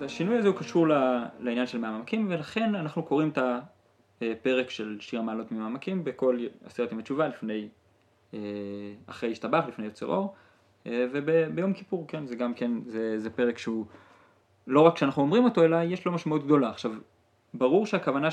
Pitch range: 115-165 Hz